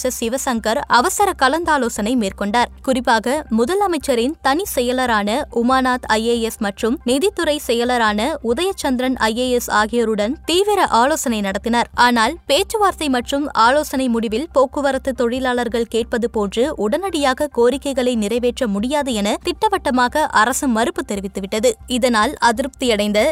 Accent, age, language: native, 20-39, Tamil